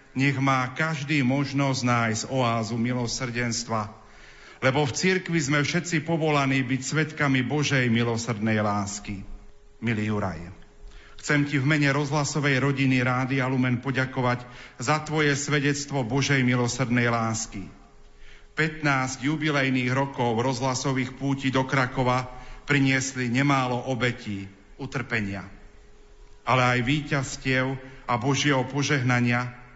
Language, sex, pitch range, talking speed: Slovak, male, 120-145 Hz, 105 wpm